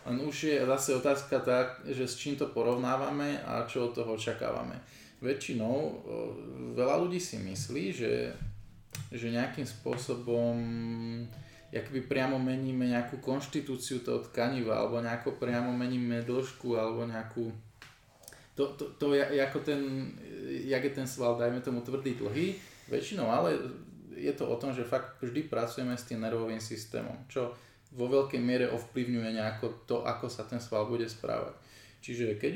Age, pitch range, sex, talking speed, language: 20-39, 115-130 Hz, male, 150 wpm, Slovak